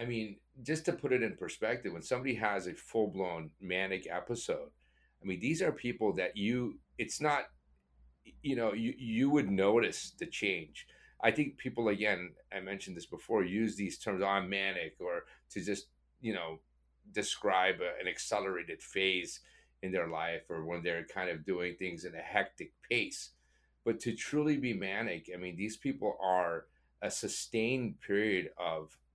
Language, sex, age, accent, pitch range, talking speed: English, male, 40-59, American, 90-115 Hz, 170 wpm